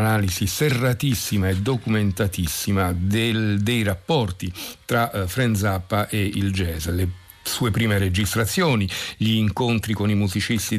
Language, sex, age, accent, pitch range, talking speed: Italian, male, 50-69, native, 95-115 Hz, 105 wpm